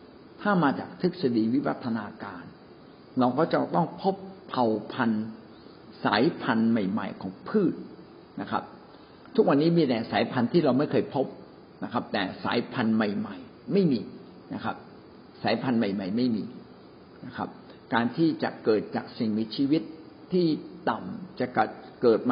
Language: Thai